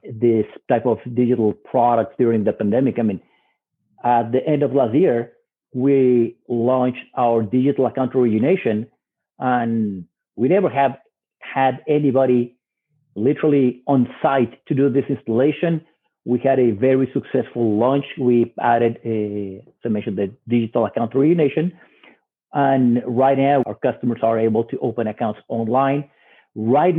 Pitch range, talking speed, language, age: 120-140 Hz, 135 wpm, English, 50-69